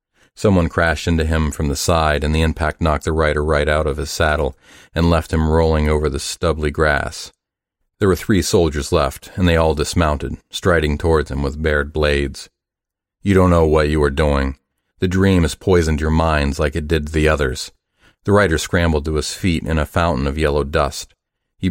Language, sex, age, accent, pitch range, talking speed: English, male, 40-59, American, 75-85 Hz, 200 wpm